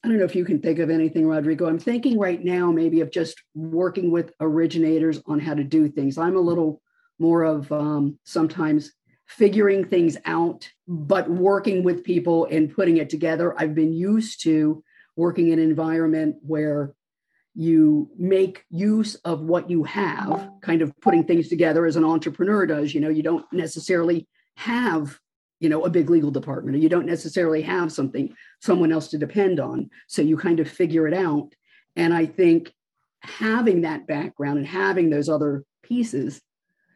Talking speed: 175 wpm